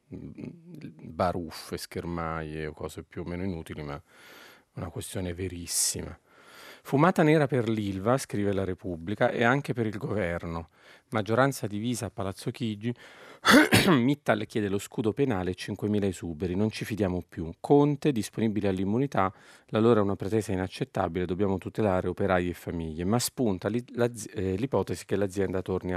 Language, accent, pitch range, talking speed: Italian, native, 90-115 Hz, 145 wpm